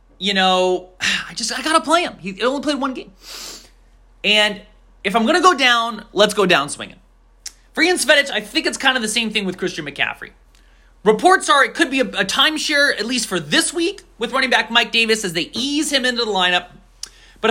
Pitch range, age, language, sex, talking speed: 180-280 Hz, 30-49, English, male, 215 wpm